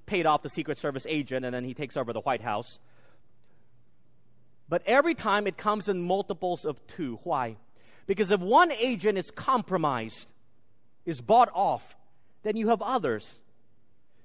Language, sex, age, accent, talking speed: English, male, 40-59, American, 155 wpm